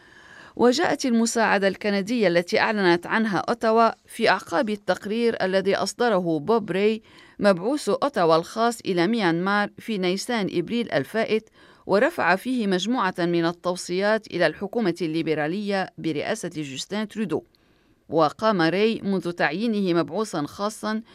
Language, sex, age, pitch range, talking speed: Arabic, female, 40-59, 175-225 Hz, 115 wpm